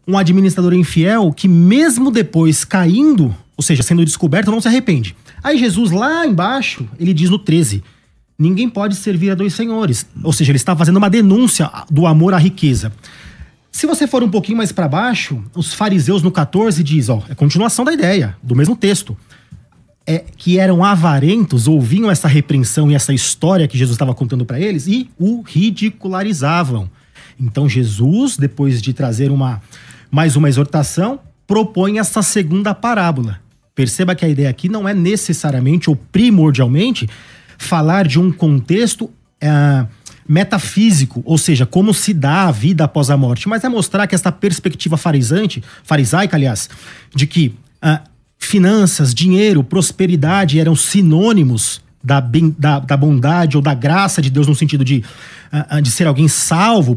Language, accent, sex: Portuguese, Brazilian, male